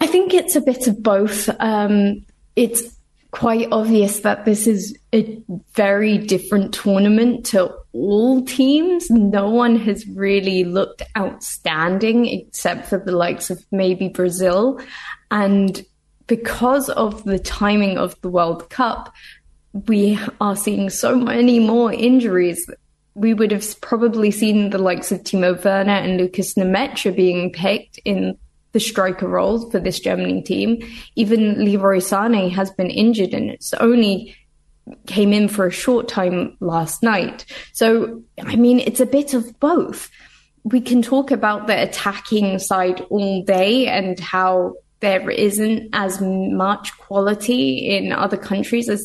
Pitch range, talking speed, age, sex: 190-235 Hz, 145 wpm, 20-39, female